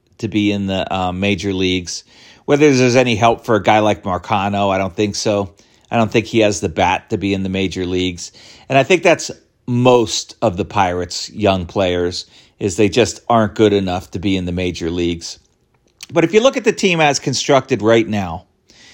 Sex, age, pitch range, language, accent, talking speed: male, 40-59, 100-130 Hz, English, American, 210 wpm